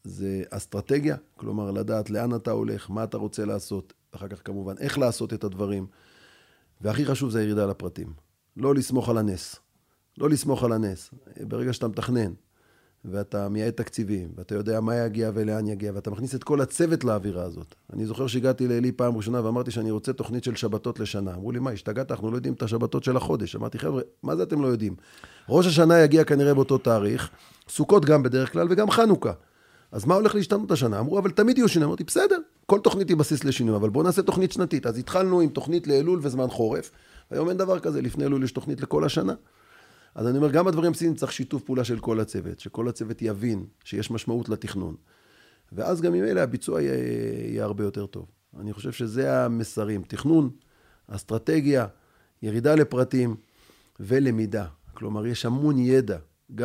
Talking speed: 165 wpm